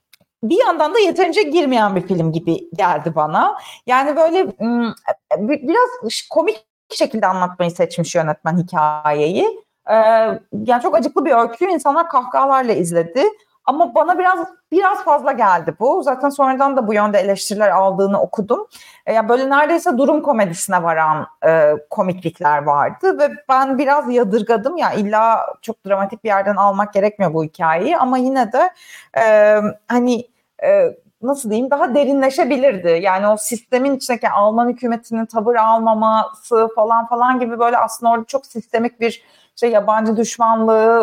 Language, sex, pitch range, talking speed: Turkish, female, 210-285 Hz, 140 wpm